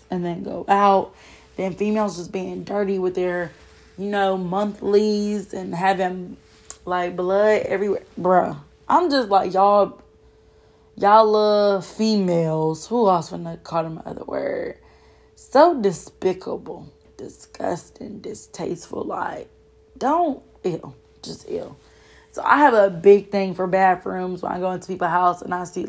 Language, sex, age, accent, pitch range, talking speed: English, female, 20-39, American, 180-205 Hz, 140 wpm